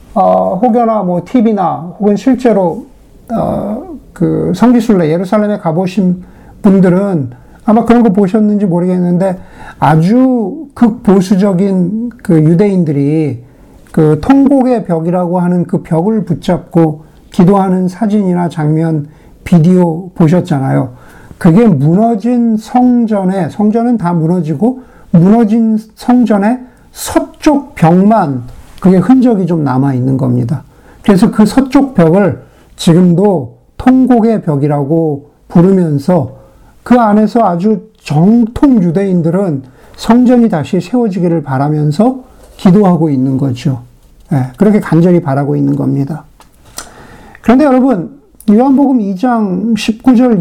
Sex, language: male, Korean